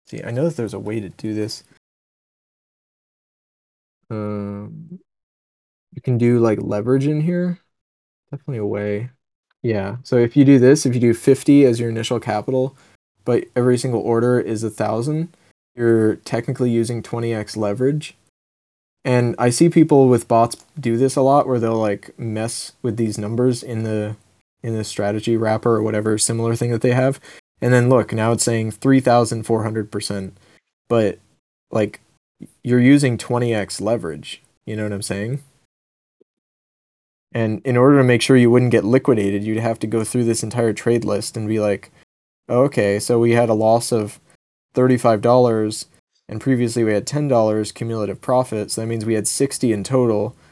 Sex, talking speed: male, 165 wpm